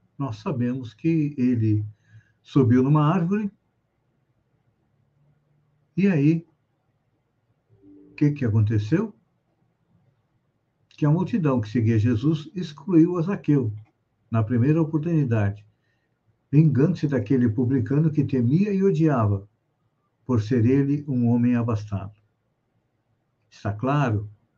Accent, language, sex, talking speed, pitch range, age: Brazilian, Portuguese, male, 100 wpm, 115-150 Hz, 60-79